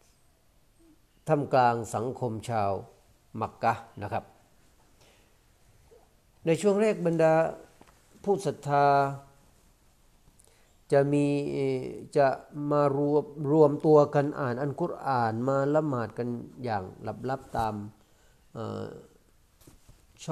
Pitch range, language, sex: 110-150 Hz, Thai, male